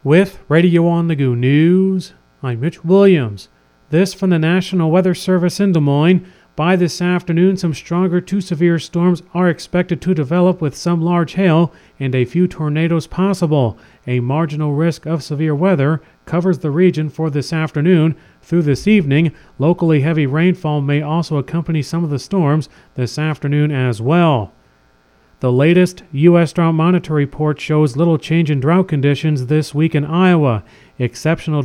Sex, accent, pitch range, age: male, American, 145-175 Hz, 40-59